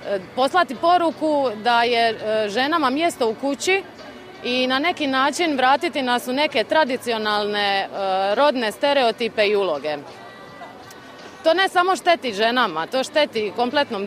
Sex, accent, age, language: female, native, 30-49, Croatian